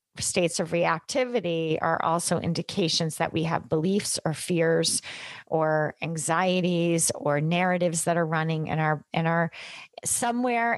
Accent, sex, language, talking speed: American, female, English, 135 wpm